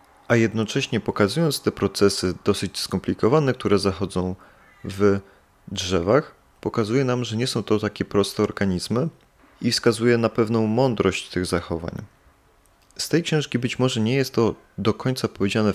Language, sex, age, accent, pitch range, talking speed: Polish, male, 20-39, native, 100-120 Hz, 145 wpm